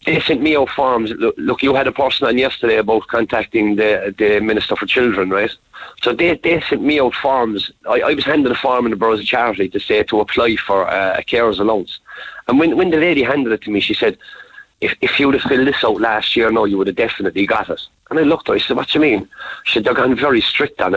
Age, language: 40-59, English